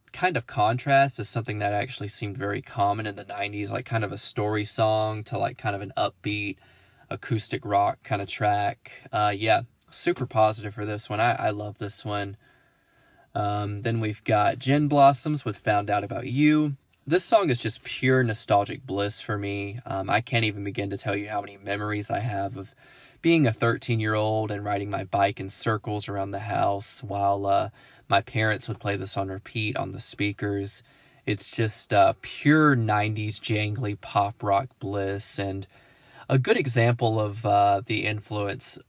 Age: 20-39